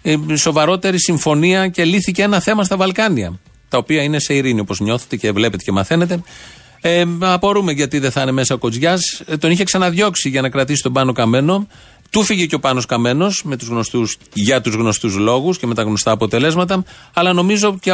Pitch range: 125-185 Hz